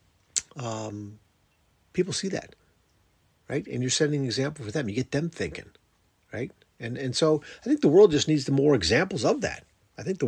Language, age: English, 50-69